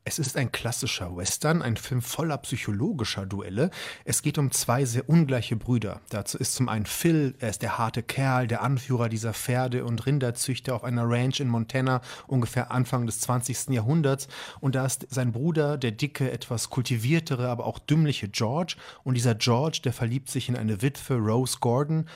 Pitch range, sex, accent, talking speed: 120-145 Hz, male, German, 180 wpm